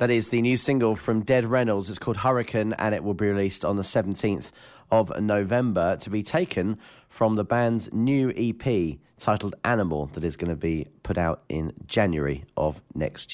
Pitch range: 90-115 Hz